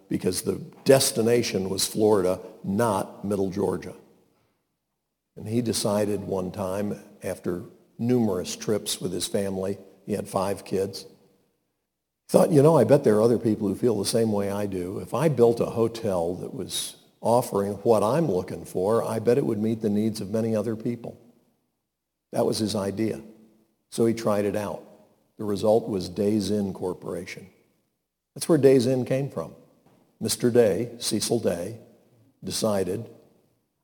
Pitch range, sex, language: 100-120 Hz, male, English